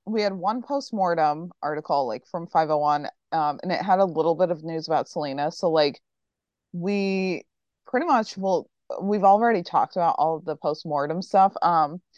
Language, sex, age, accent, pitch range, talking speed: English, female, 20-39, American, 155-195 Hz, 170 wpm